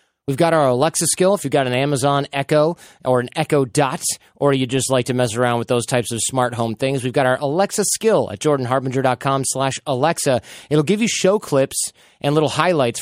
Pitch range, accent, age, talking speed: 125-160 Hz, American, 20-39, 210 wpm